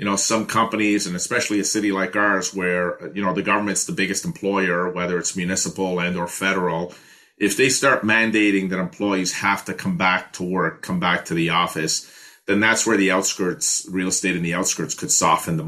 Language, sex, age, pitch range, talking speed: English, male, 30-49, 90-115 Hz, 205 wpm